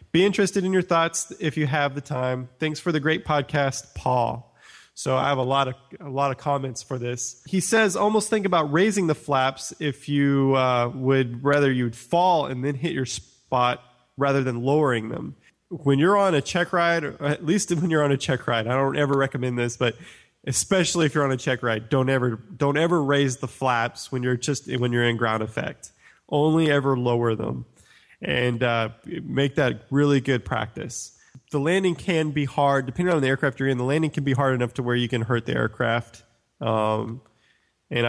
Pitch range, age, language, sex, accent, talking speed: 120-145 Hz, 20-39, English, male, American, 210 wpm